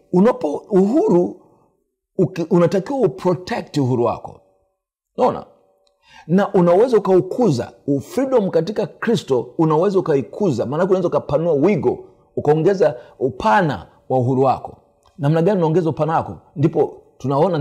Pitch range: 145-200 Hz